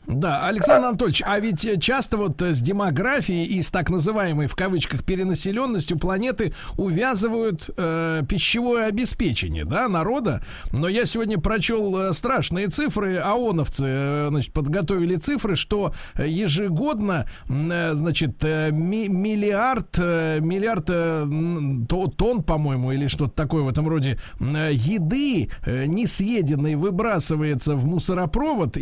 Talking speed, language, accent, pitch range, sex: 105 wpm, Russian, native, 150-205 Hz, male